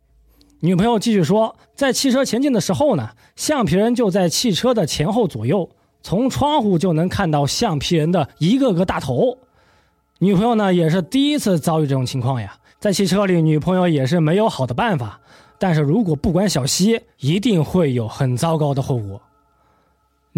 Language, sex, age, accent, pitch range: Chinese, male, 20-39, native, 140-220 Hz